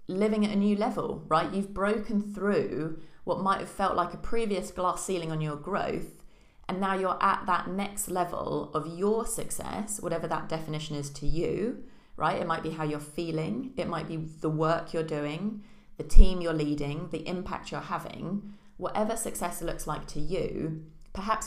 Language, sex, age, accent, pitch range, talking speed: English, female, 30-49, British, 160-200 Hz, 185 wpm